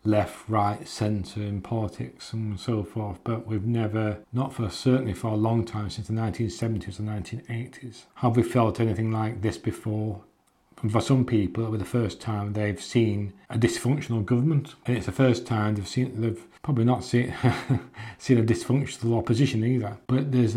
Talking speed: 175 wpm